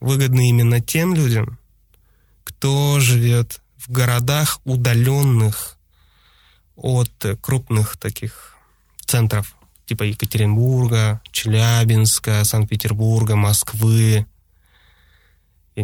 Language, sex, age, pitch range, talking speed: Russian, male, 20-39, 105-130 Hz, 70 wpm